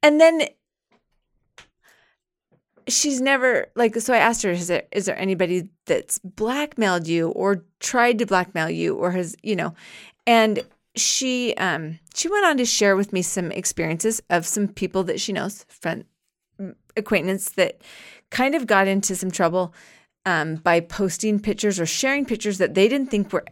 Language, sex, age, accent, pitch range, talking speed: English, female, 30-49, American, 180-235 Hz, 170 wpm